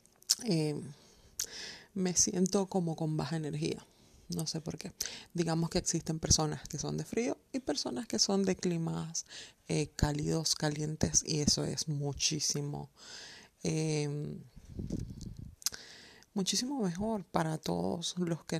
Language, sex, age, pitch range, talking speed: Spanish, female, 30-49, 160-185 Hz, 125 wpm